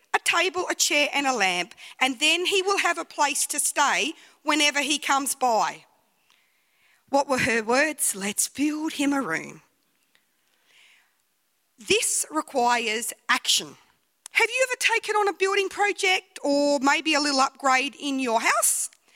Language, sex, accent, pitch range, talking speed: English, female, Australian, 275-370 Hz, 150 wpm